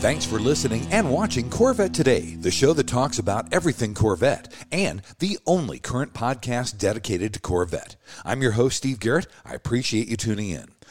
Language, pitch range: English, 110-140 Hz